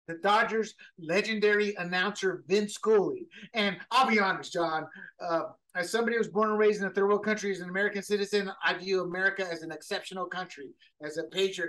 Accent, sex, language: American, male, English